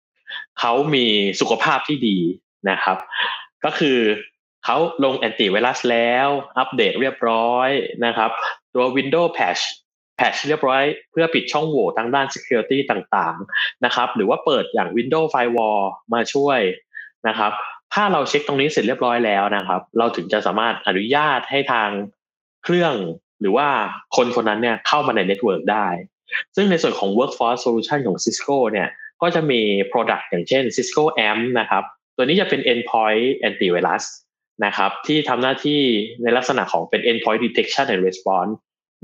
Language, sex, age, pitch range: Thai, male, 20-39, 110-150 Hz